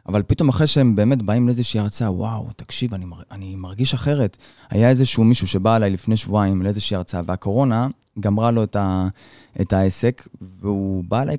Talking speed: 165 wpm